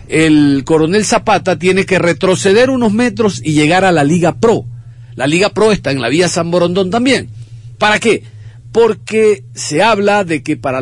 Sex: male